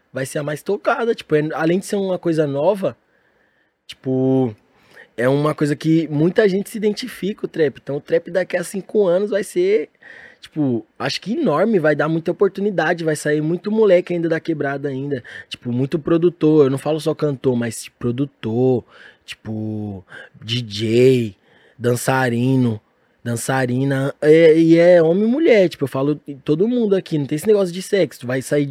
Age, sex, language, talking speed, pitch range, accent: 20-39, male, Portuguese, 170 wpm, 130-170 Hz, Brazilian